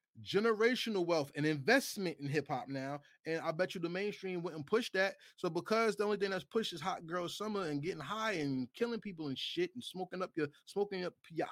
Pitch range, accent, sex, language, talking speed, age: 130-205 Hz, American, male, English, 225 wpm, 20-39